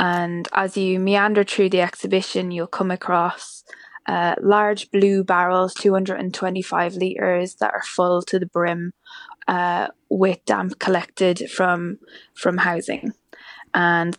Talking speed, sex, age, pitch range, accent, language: 125 wpm, female, 10-29, 180-195 Hz, British, English